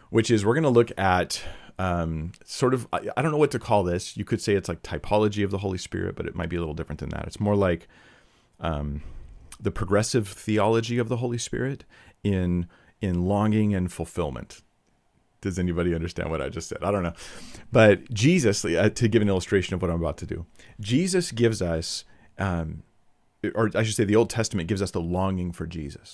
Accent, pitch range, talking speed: American, 85-110 Hz, 210 wpm